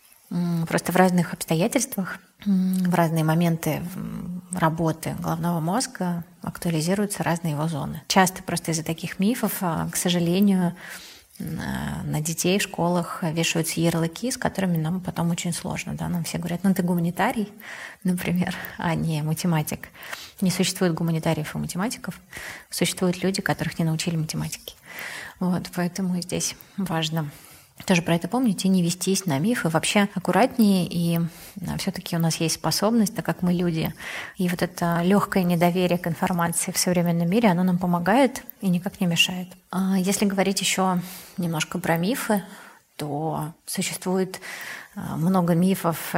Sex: female